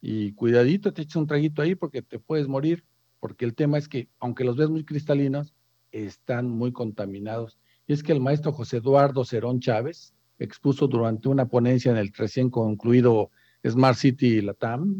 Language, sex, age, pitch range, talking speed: Spanish, male, 50-69, 120-155 Hz, 175 wpm